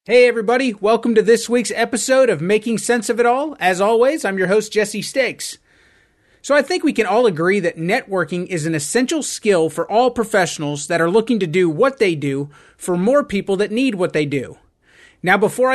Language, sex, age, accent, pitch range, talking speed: English, male, 30-49, American, 170-235 Hz, 205 wpm